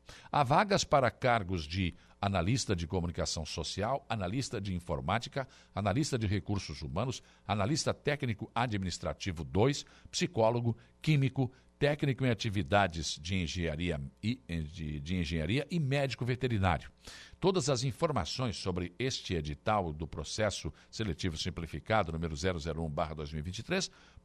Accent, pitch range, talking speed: Brazilian, 85-120 Hz, 105 wpm